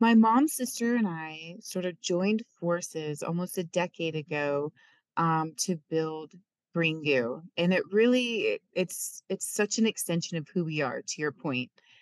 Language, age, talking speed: English, 30-49, 165 wpm